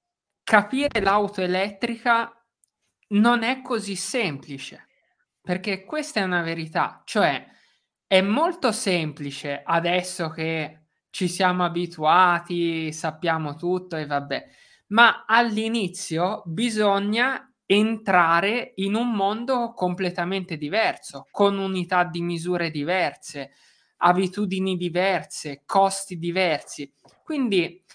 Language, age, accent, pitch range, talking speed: Italian, 20-39, native, 170-220 Hz, 95 wpm